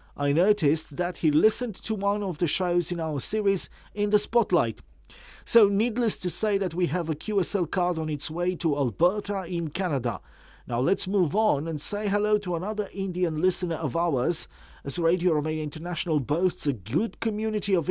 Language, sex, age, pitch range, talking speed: English, male, 40-59, 150-200 Hz, 185 wpm